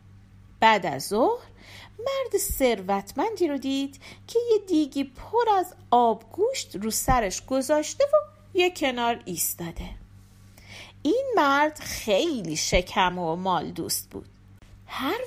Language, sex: Persian, female